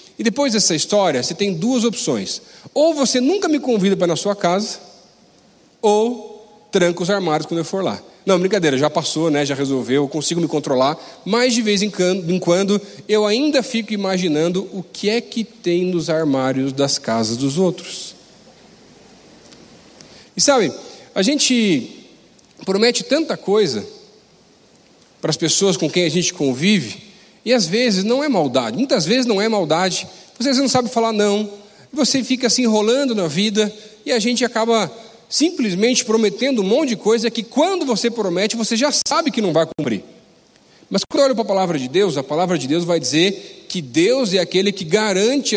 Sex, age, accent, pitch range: male, 40-59, Brazilian, 180-245 Hz